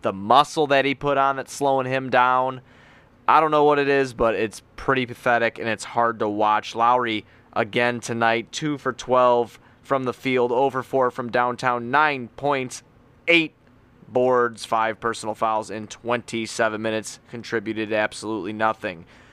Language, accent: English, American